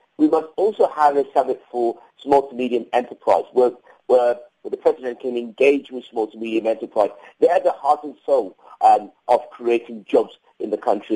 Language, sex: English, male